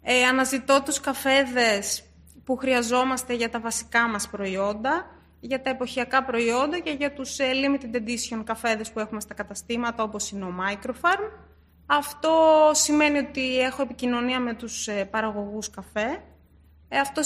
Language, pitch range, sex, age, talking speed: Greek, 220-285 Hz, female, 20-39, 135 wpm